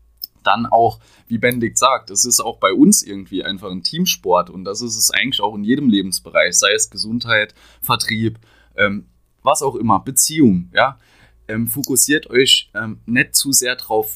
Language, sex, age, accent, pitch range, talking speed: German, male, 20-39, German, 90-120 Hz, 170 wpm